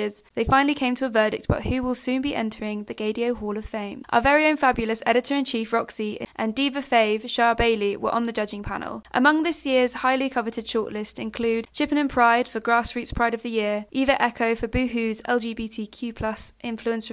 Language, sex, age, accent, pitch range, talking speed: English, female, 20-39, British, 220-255 Hz, 190 wpm